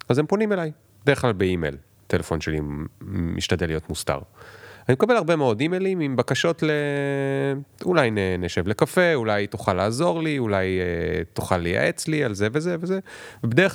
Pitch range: 95-140 Hz